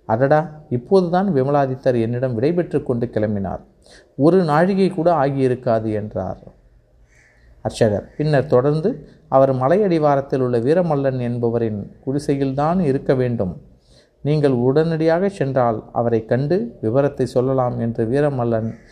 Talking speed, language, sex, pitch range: 105 wpm, Tamil, male, 120-150 Hz